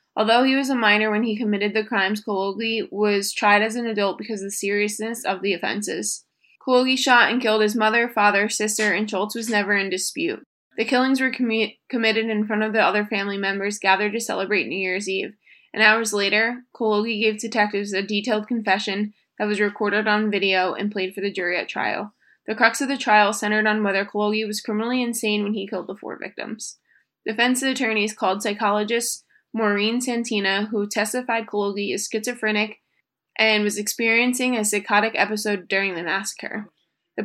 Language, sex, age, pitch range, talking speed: English, female, 20-39, 205-225 Hz, 185 wpm